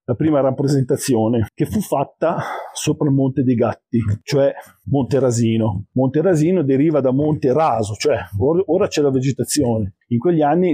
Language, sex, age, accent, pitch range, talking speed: Italian, male, 50-69, native, 115-145 Hz, 160 wpm